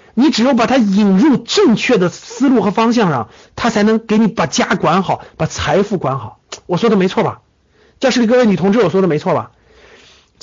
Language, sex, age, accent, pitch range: Chinese, male, 50-69, native, 190-285 Hz